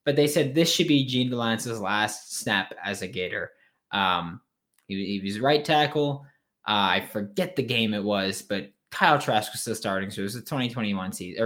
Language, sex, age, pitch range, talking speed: English, male, 20-39, 105-140 Hz, 200 wpm